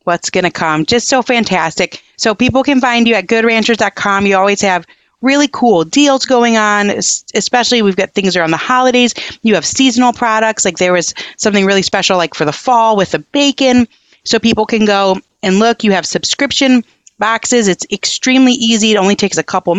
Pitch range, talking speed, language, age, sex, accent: 190-240 Hz, 190 wpm, English, 30-49, female, American